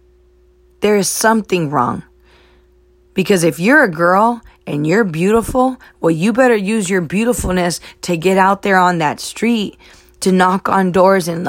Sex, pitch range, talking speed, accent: female, 125-200 Hz, 155 wpm, American